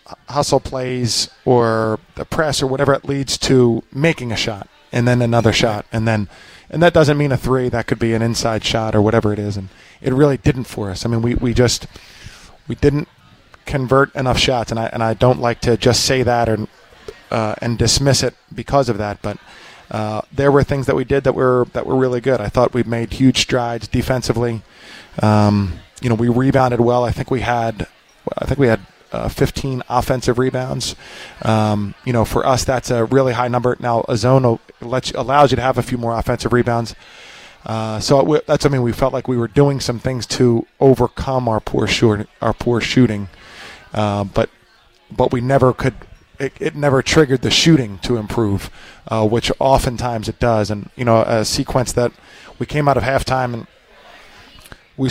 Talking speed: 200 wpm